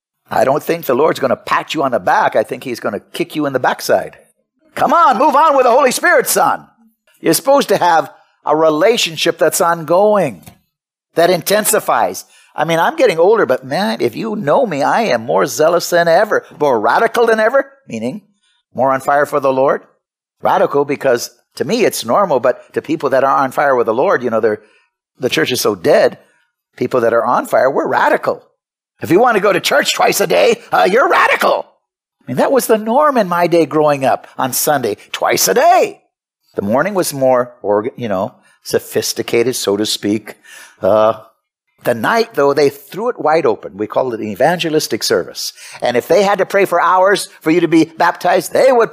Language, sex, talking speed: English, male, 205 wpm